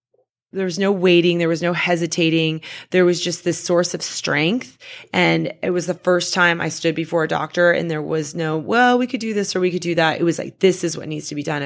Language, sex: English, female